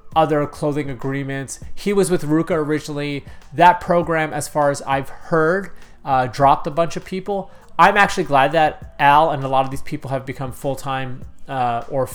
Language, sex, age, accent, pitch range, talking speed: English, male, 30-49, American, 130-155 Hz, 180 wpm